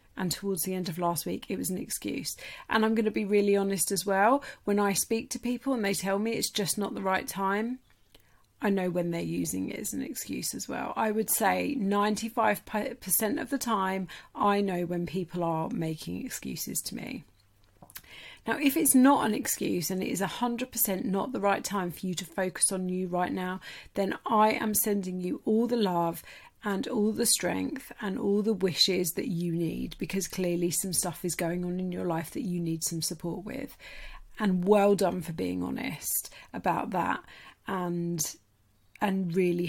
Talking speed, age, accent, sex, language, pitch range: 200 wpm, 30-49, British, female, English, 175-220 Hz